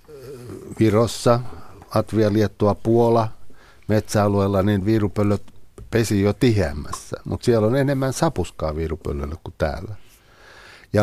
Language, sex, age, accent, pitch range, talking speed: Finnish, male, 60-79, native, 90-115 Hz, 105 wpm